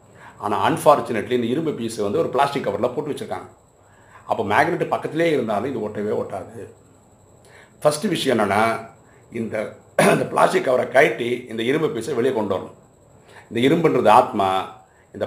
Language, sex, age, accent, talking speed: Tamil, male, 50-69, native, 140 wpm